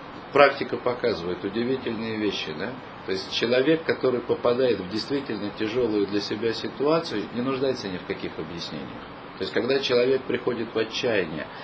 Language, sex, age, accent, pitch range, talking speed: Russian, male, 40-59, native, 105-135 Hz, 150 wpm